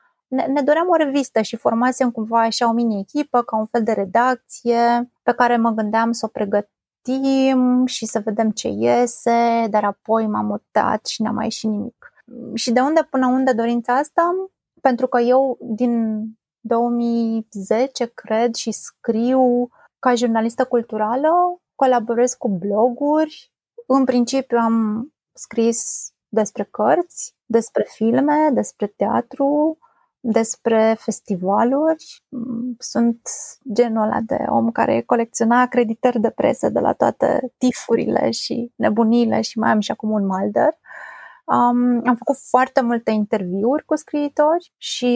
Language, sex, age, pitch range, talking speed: Romanian, female, 20-39, 225-270 Hz, 140 wpm